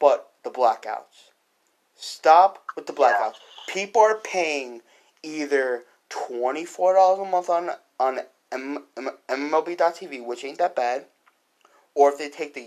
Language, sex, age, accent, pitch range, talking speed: English, male, 20-39, American, 125-180 Hz, 135 wpm